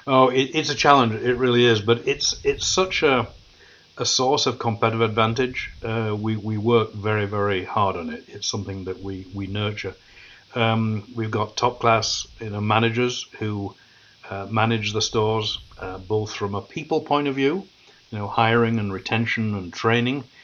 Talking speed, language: 175 wpm, English